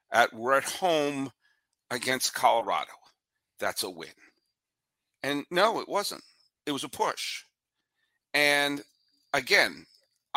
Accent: American